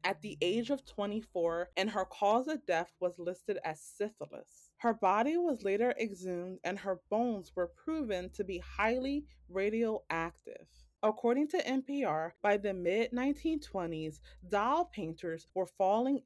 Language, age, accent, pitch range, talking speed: English, 20-39, American, 180-250 Hz, 150 wpm